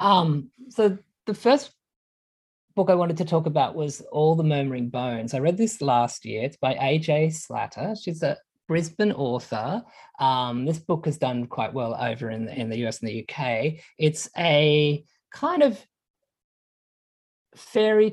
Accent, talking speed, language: Australian, 160 wpm, English